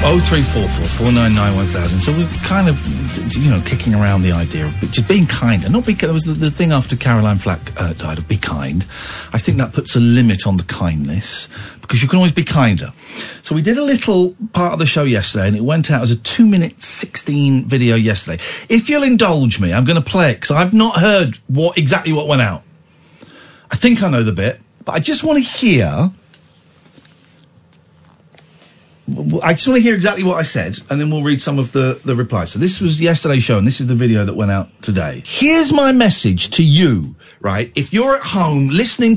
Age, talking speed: 50-69, 225 wpm